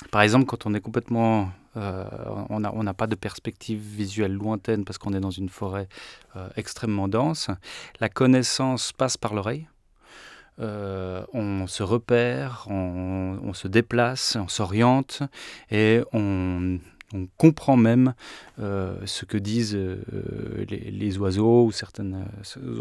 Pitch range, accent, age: 100-120 Hz, French, 30-49